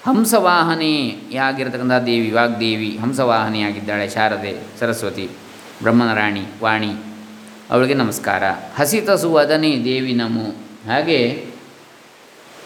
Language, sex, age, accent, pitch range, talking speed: Kannada, male, 20-39, native, 115-150 Hz, 70 wpm